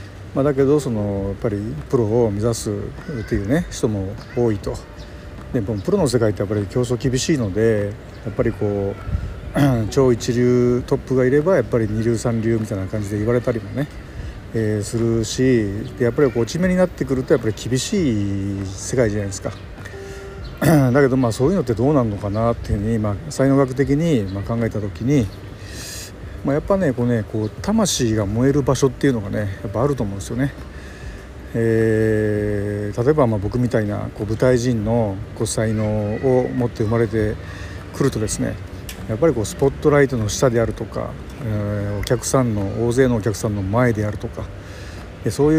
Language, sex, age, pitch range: Japanese, male, 50-69, 105-130 Hz